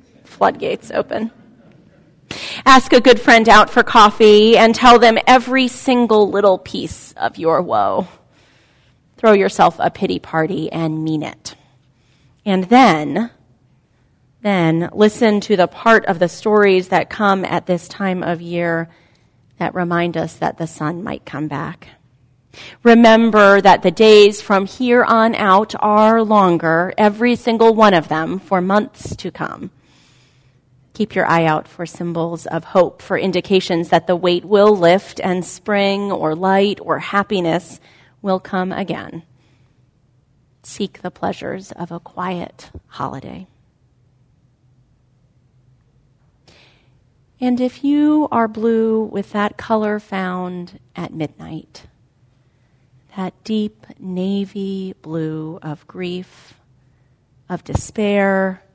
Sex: female